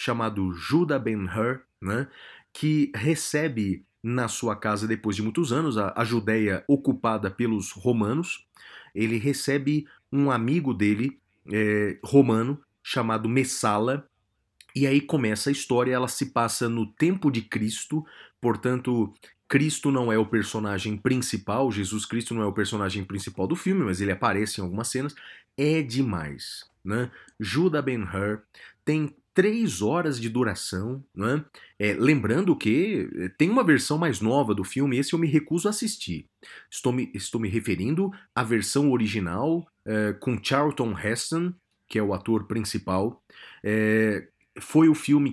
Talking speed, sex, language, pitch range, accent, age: 140 wpm, male, Portuguese, 105-140 Hz, Brazilian, 30-49